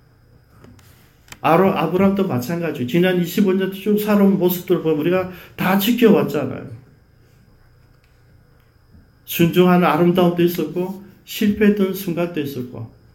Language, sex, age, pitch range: Korean, male, 40-59, 125-195 Hz